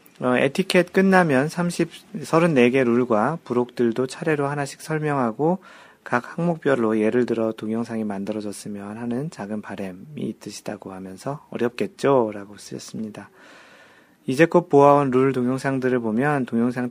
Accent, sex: native, male